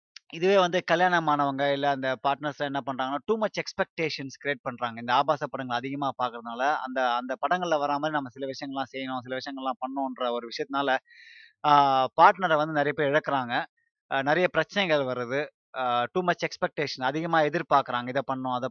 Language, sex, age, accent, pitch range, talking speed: Tamil, male, 20-39, native, 130-160 Hz, 155 wpm